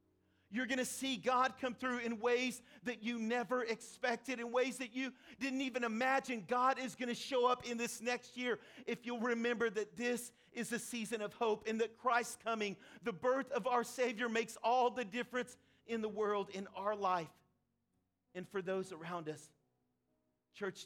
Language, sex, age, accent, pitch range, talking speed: English, male, 40-59, American, 190-235 Hz, 185 wpm